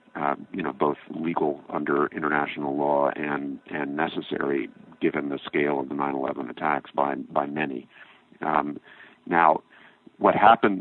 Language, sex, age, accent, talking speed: English, male, 50-69, American, 140 wpm